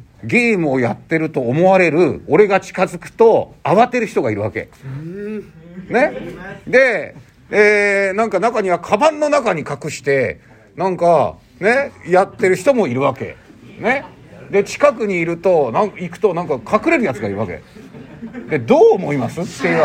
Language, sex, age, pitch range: Japanese, male, 50-69, 170-240 Hz